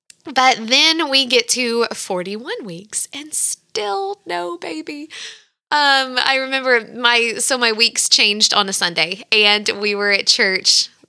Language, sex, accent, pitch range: English, female, American, 190-260 Hz